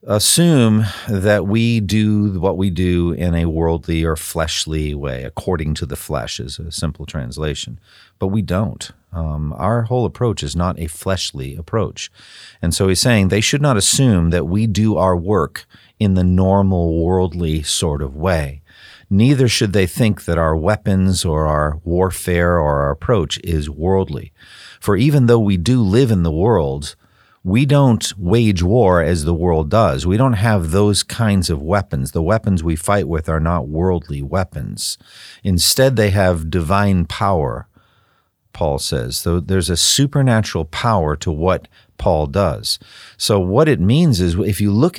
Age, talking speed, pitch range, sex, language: 50-69, 165 wpm, 80-110 Hz, male, English